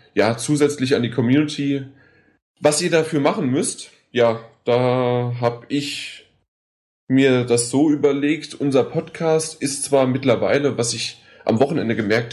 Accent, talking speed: German, 135 wpm